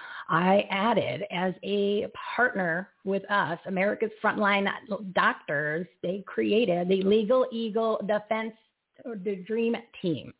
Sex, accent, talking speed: female, American, 110 wpm